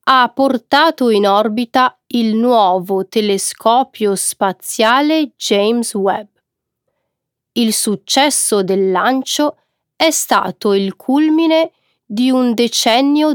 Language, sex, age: Italian, female, 30-49